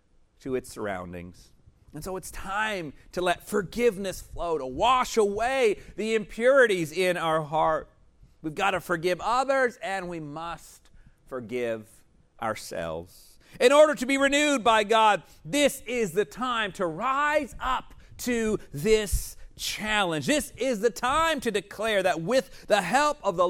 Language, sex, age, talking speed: English, male, 40-59, 150 wpm